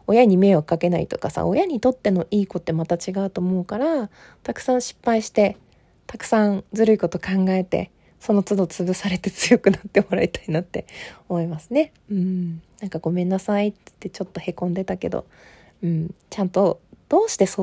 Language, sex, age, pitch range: Japanese, female, 20-39, 185-230 Hz